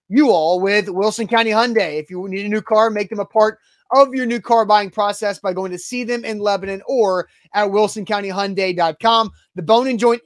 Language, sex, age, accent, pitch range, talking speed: English, male, 20-39, American, 180-215 Hz, 205 wpm